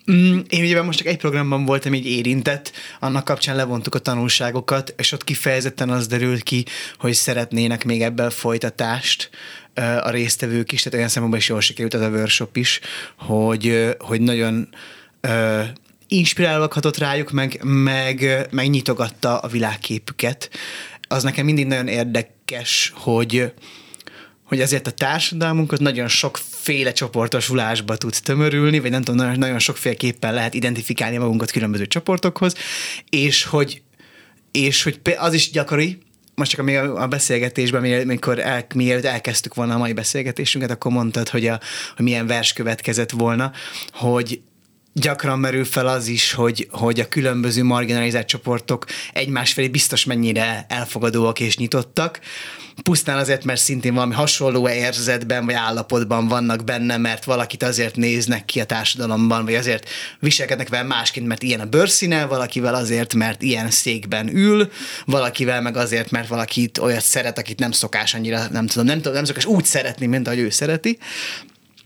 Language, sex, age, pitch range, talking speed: Hungarian, male, 20-39, 115-140 Hz, 150 wpm